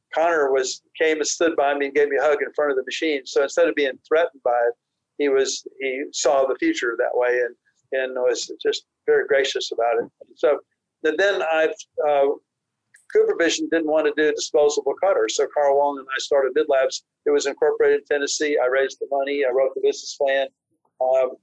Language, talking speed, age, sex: English, 210 wpm, 50-69, male